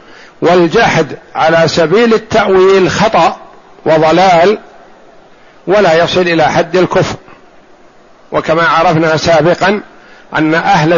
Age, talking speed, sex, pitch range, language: 50-69, 85 wpm, male, 150-195 Hz, Arabic